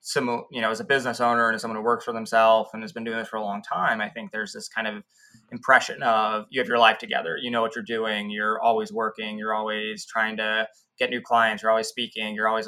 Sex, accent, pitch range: male, American, 110-120 Hz